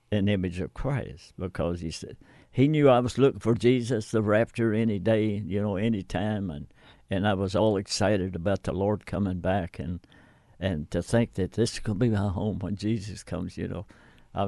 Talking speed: 205 wpm